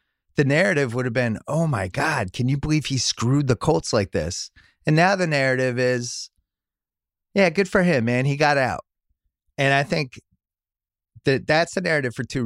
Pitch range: 100-135 Hz